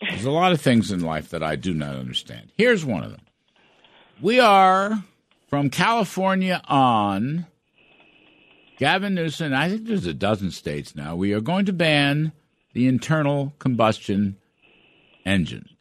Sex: male